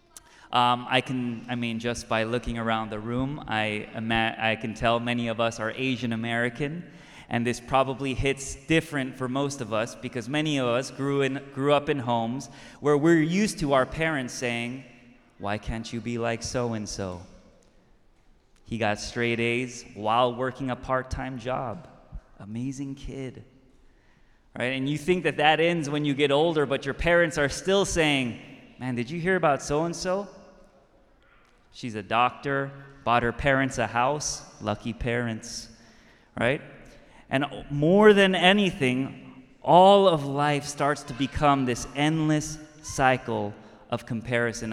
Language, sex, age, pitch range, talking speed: English, male, 20-39, 120-150 Hz, 150 wpm